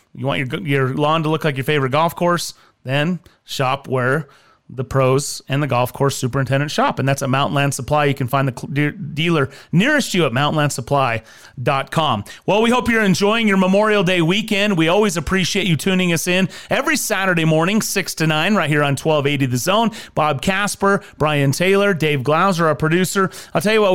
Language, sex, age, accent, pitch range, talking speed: English, male, 30-49, American, 140-195 Hz, 200 wpm